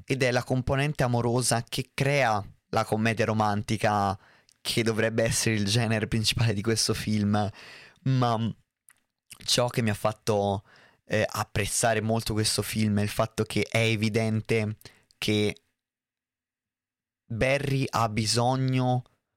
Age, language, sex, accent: 20-39, Italian, male, native